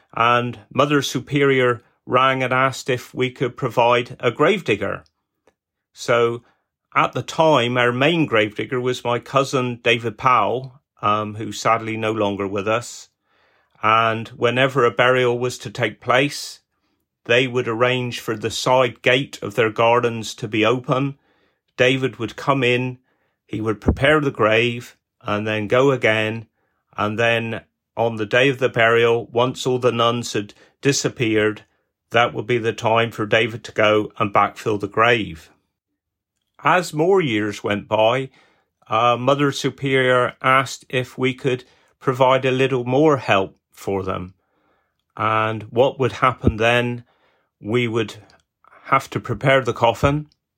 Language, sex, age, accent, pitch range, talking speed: English, male, 40-59, British, 110-130 Hz, 145 wpm